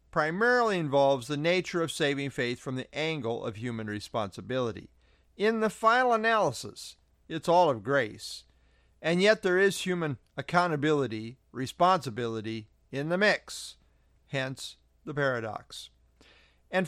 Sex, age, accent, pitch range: male, 50-69, American, 120-185 Hz